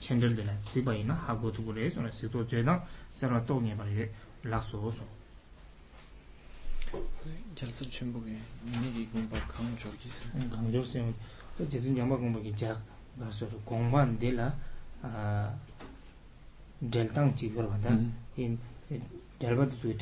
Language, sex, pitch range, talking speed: English, male, 110-125 Hz, 50 wpm